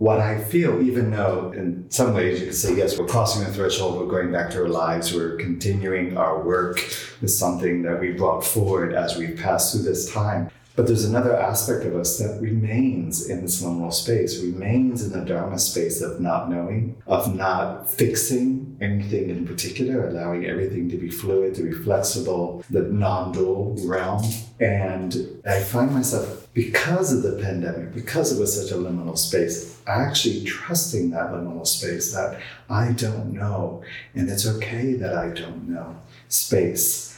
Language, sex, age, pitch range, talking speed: English, male, 40-59, 90-120 Hz, 175 wpm